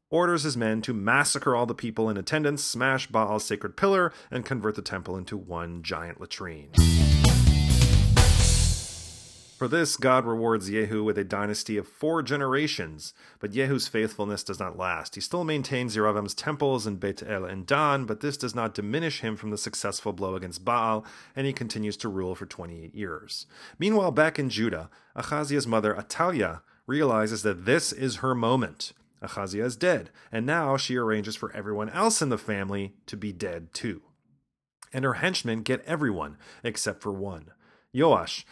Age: 30-49